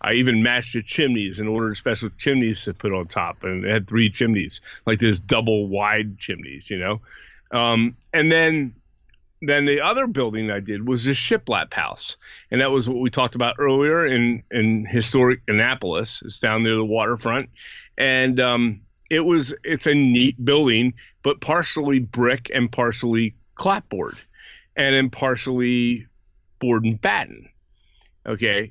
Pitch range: 110-130 Hz